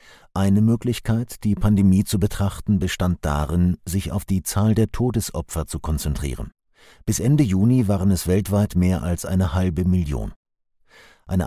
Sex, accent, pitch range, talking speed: male, German, 90-110 Hz, 145 wpm